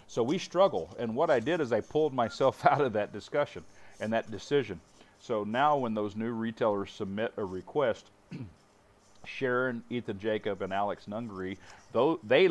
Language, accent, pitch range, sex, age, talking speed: English, American, 100-115 Hz, male, 40-59, 165 wpm